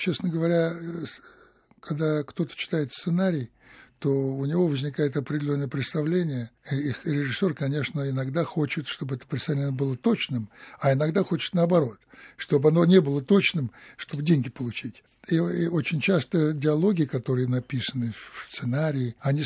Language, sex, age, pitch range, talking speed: Russian, male, 60-79, 135-170 Hz, 135 wpm